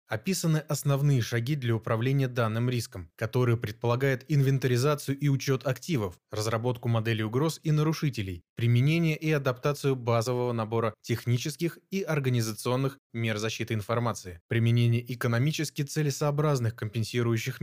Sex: male